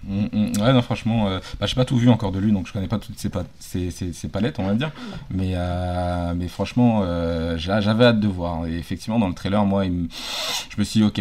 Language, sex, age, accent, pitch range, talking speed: French, male, 20-39, French, 85-105 Hz, 280 wpm